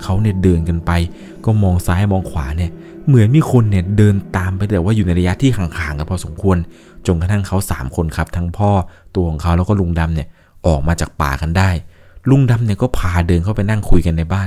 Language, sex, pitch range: Thai, male, 85-110 Hz